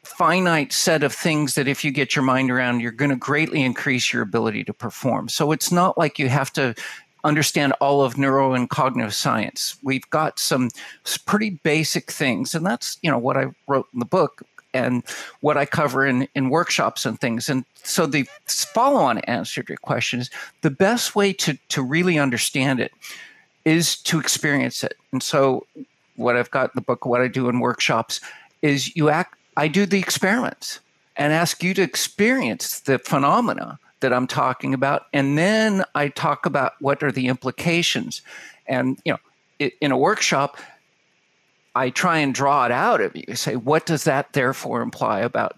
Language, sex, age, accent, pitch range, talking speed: English, male, 50-69, American, 135-170 Hz, 185 wpm